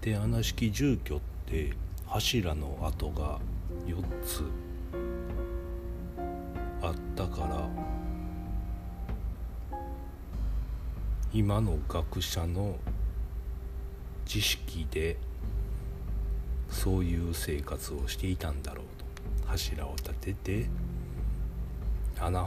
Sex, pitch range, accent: male, 70-90 Hz, native